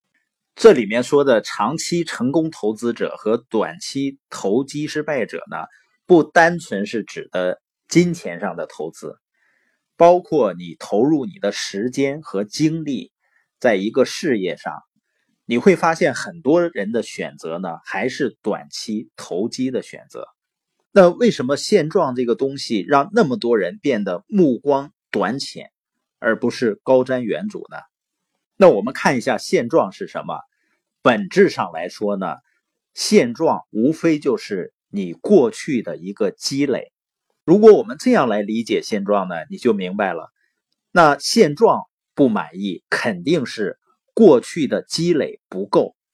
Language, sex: Chinese, male